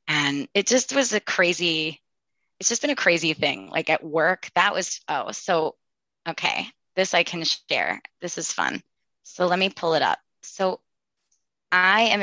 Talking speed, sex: 175 wpm, female